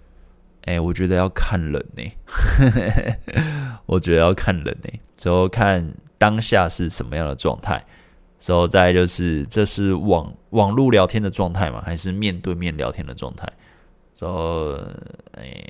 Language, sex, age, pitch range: Chinese, male, 20-39, 85-110 Hz